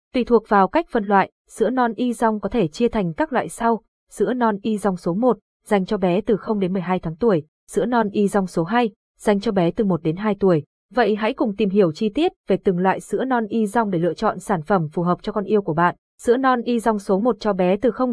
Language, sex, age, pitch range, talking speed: Vietnamese, female, 20-39, 185-235 Hz, 255 wpm